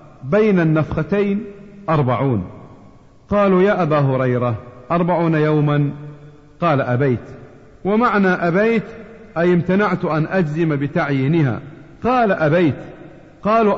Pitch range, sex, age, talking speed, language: 125-185 Hz, male, 50-69, 90 wpm, Arabic